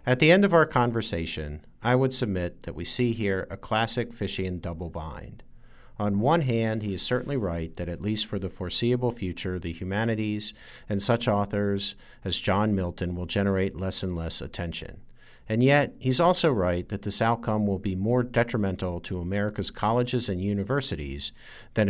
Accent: American